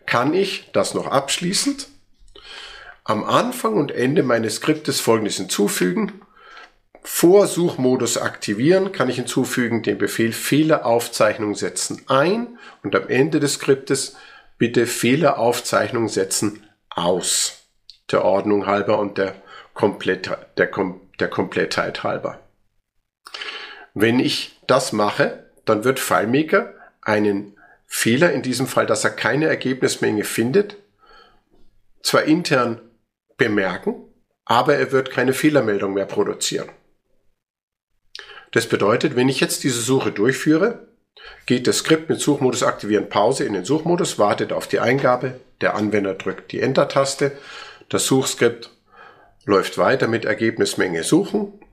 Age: 50-69